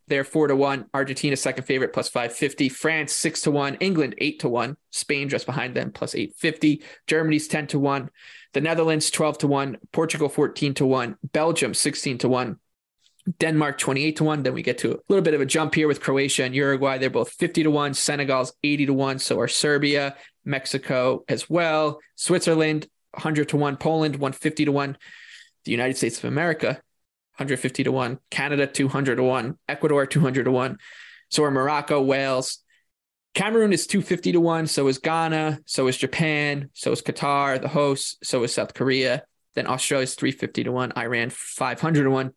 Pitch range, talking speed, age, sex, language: 135-155 Hz, 185 wpm, 20-39, male, English